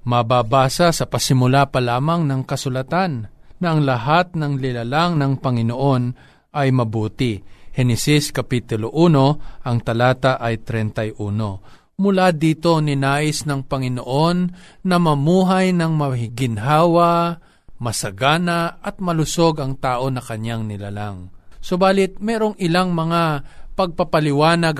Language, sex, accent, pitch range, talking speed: Filipino, male, native, 130-170 Hz, 110 wpm